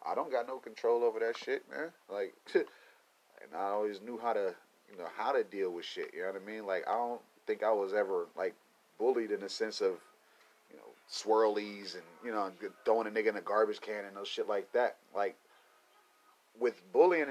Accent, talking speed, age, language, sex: American, 215 wpm, 30-49, English, male